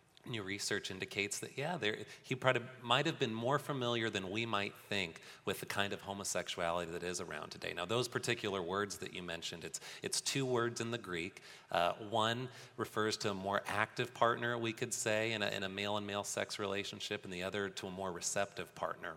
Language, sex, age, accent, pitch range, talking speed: English, male, 30-49, American, 100-120 Hz, 210 wpm